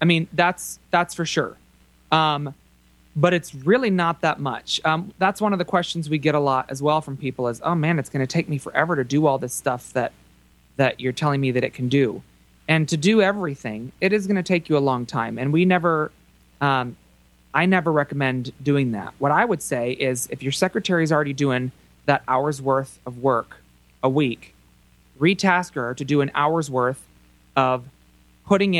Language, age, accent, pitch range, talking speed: English, 30-49, American, 130-160 Hz, 205 wpm